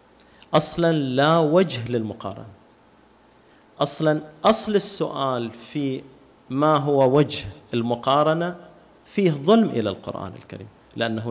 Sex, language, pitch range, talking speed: male, Arabic, 115-150 Hz, 95 wpm